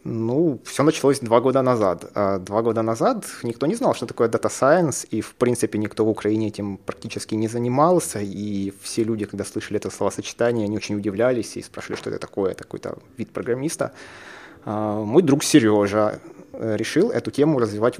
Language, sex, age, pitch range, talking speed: Russian, male, 20-39, 105-125 Hz, 175 wpm